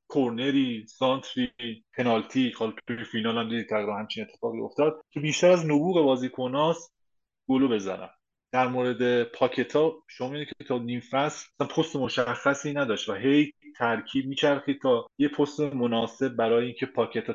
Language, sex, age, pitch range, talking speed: Persian, male, 20-39, 115-145 Hz, 135 wpm